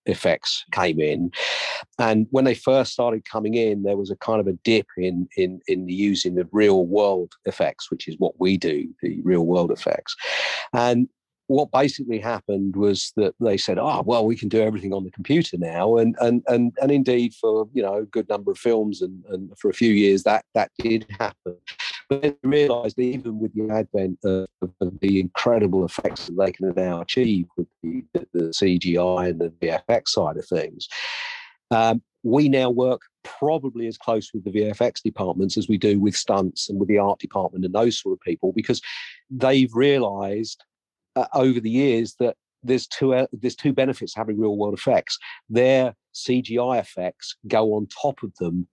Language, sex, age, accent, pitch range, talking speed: English, male, 50-69, British, 95-120 Hz, 195 wpm